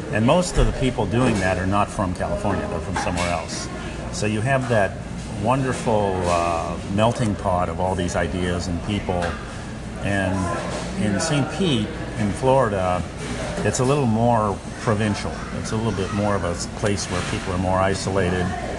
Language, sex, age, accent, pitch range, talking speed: English, male, 50-69, American, 90-105 Hz, 170 wpm